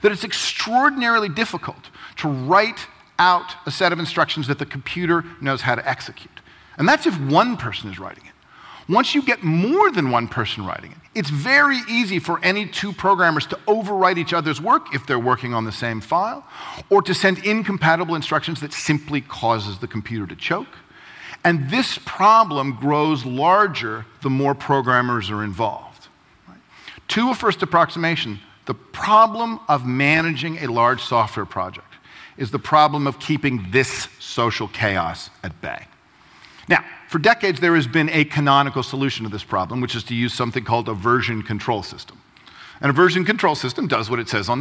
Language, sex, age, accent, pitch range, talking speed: English, male, 40-59, American, 125-190 Hz, 175 wpm